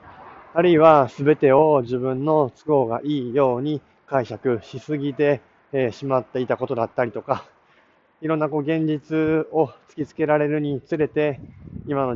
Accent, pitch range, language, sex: native, 120-150 Hz, Japanese, male